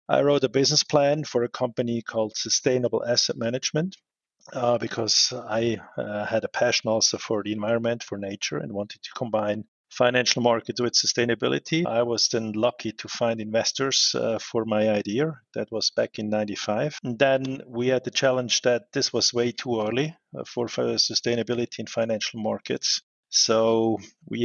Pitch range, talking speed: 110-125 Hz, 165 wpm